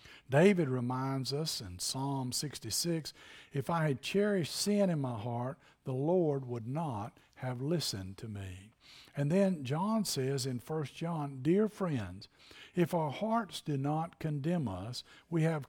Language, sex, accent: English, male, American